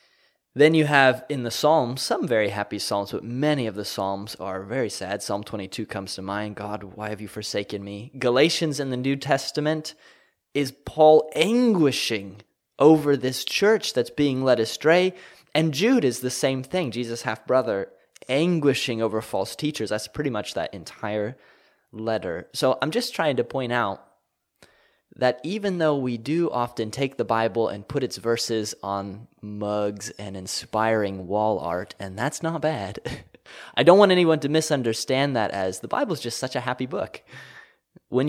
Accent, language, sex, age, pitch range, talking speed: American, English, male, 20-39, 105-155 Hz, 170 wpm